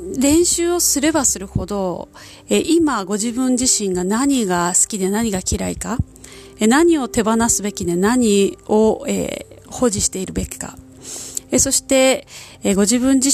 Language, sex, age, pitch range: Japanese, female, 30-49, 195-265 Hz